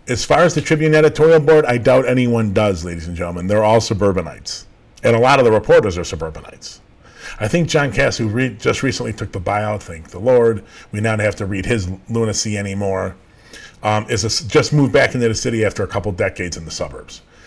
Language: English